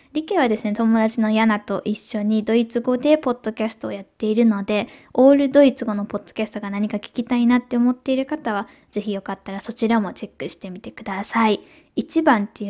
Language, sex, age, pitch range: Japanese, female, 10-29, 210-270 Hz